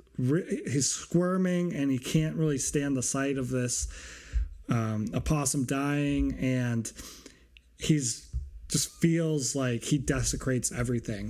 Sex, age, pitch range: male, 30-49, 120-155 Hz